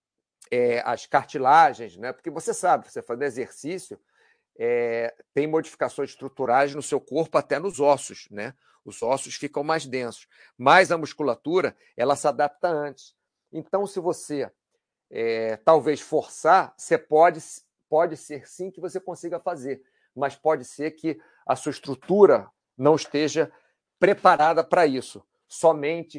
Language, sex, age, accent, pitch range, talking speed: Portuguese, male, 40-59, Brazilian, 140-175 Hz, 140 wpm